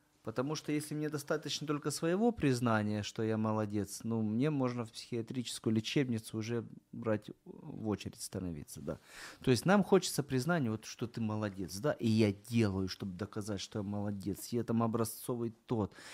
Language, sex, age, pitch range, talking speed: Ukrainian, male, 30-49, 105-140 Hz, 165 wpm